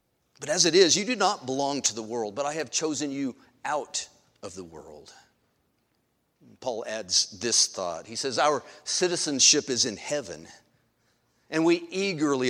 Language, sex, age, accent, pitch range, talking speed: English, male, 40-59, American, 120-160 Hz, 165 wpm